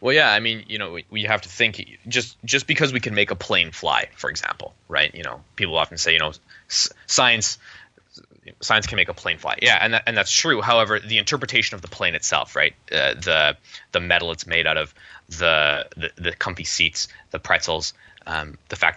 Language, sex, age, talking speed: English, male, 20-39, 220 wpm